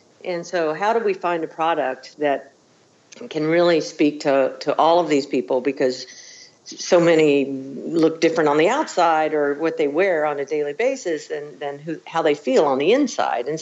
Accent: American